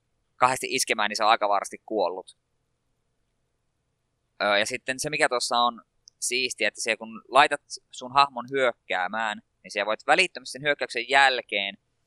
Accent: native